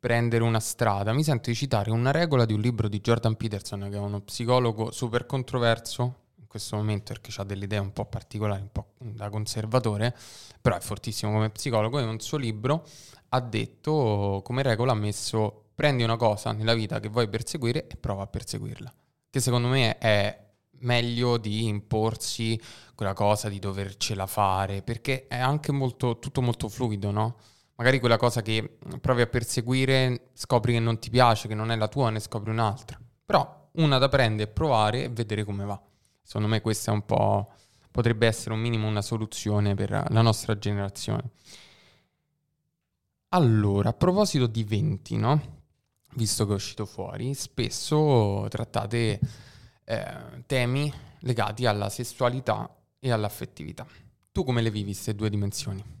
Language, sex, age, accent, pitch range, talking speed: Italian, male, 20-39, native, 105-125 Hz, 165 wpm